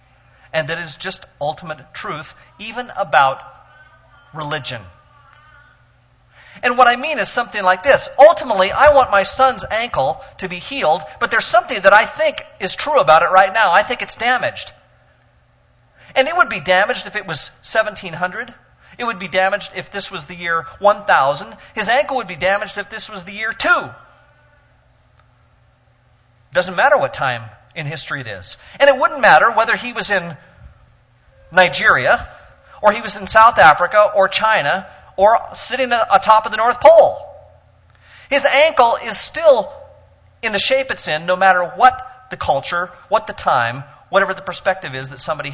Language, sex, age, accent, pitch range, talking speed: English, male, 40-59, American, 165-240 Hz, 165 wpm